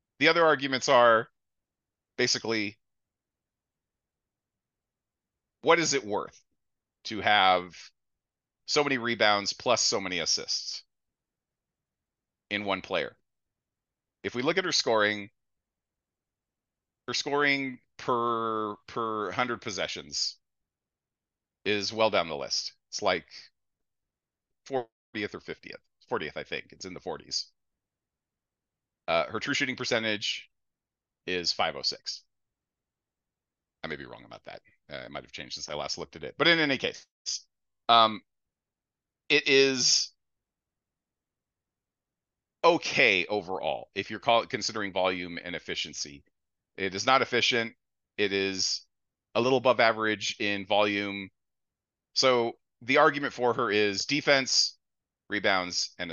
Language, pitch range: English, 95-125 Hz